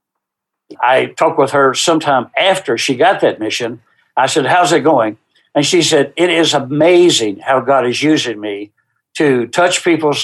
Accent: American